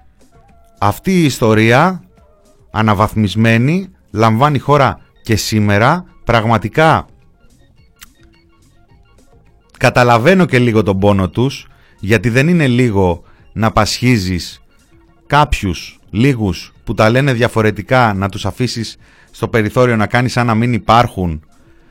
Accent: native